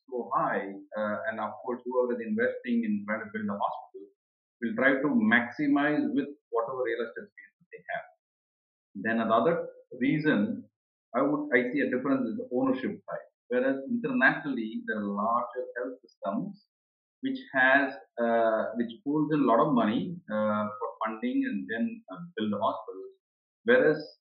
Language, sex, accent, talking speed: English, male, Indian, 160 wpm